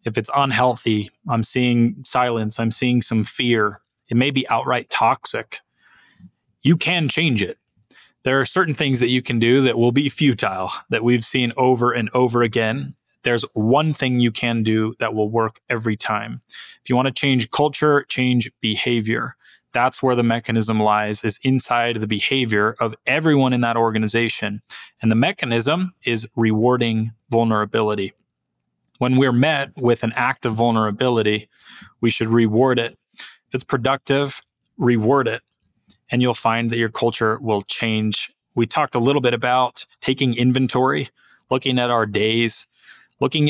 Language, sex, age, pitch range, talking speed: English, male, 20-39, 110-125 Hz, 155 wpm